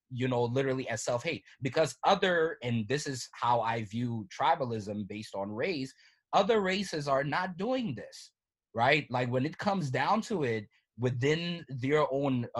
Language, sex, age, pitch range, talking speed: English, male, 20-39, 110-135 Hz, 160 wpm